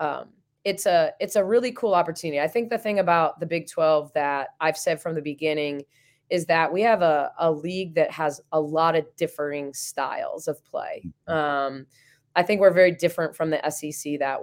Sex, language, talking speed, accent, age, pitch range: female, English, 200 wpm, American, 20-39, 145-175 Hz